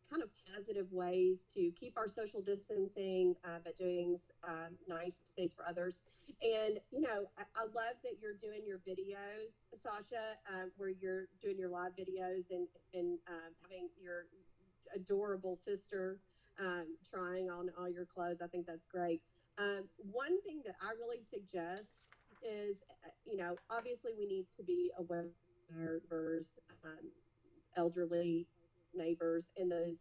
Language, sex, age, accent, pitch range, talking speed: English, female, 40-59, American, 165-200 Hz, 150 wpm